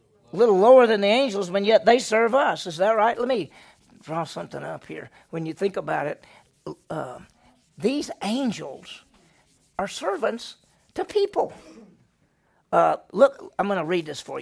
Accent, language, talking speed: American, English, 165 wpm